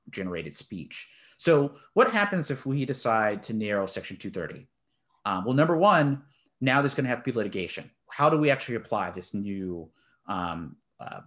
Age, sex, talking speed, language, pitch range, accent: 30-49, male, 170 wpm, English, 115-145 Hz, American